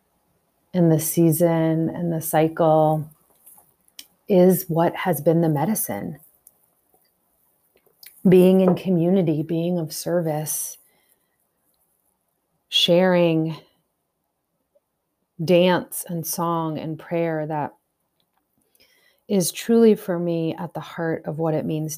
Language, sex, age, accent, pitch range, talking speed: English, female, 30-49, American, 155-180 Hz, 100 wpm